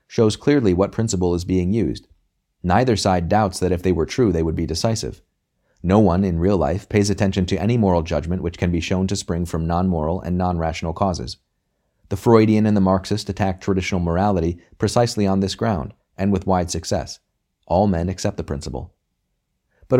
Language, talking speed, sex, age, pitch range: English, 190 wpm, male, 30-49, 90-105 Hz